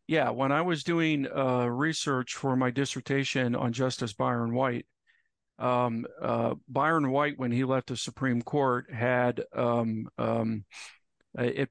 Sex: male